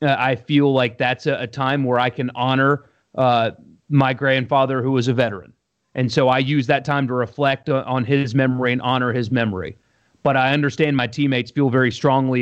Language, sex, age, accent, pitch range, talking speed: English, male, 30-49, American, 125-165 Hz, 205 wpm